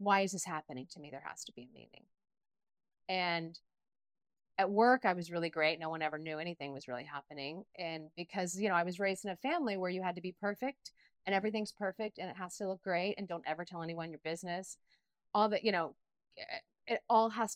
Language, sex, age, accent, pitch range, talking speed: English, female, 30-49, American, 175-225 Hz, 225 wpm